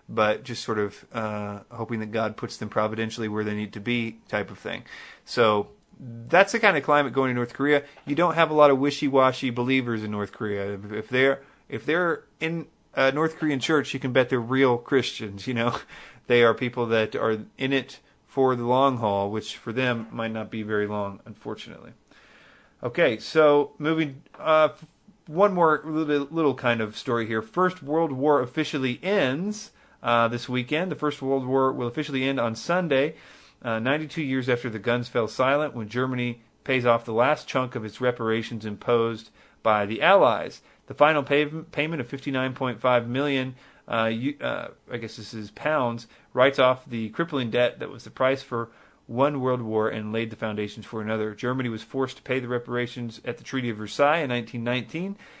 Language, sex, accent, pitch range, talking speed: English, male, American, 115-145 Hz, 190 wpm